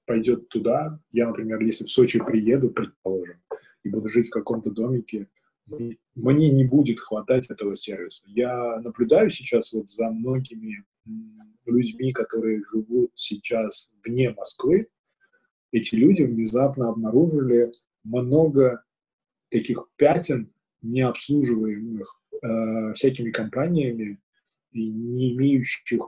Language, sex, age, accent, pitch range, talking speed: Russian, male, 20-39, native, 115-140 Hz, 105 wpm